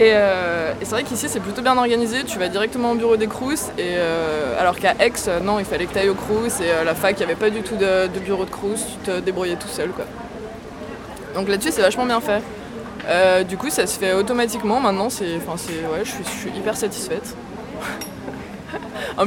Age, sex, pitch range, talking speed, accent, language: 20-39, female, 190-230 Hz, 230 wpm, French, French